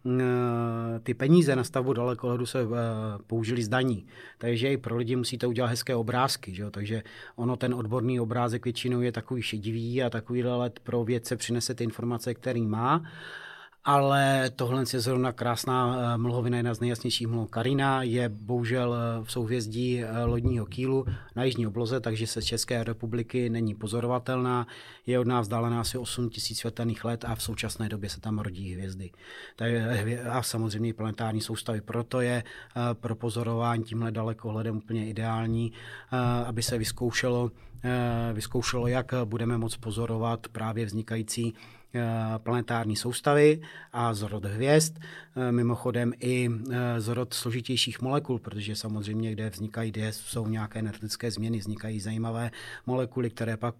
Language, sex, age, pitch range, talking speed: Czech, male, 30-49, 110-125 Hz, 145 wpm